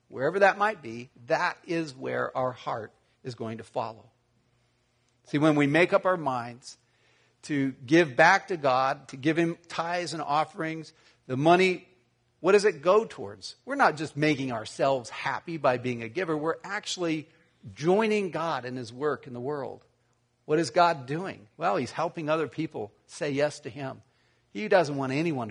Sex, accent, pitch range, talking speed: male, American, 125-170 Hz, 175 wpm